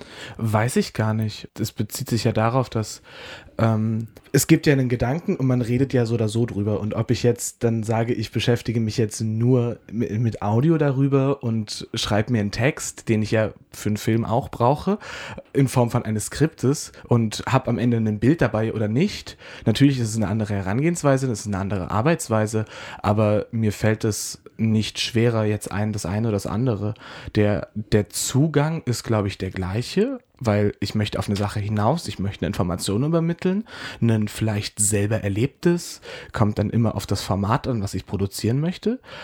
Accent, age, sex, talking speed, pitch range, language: German, 20-39, male, 195 wpm, 105-130 Hz, German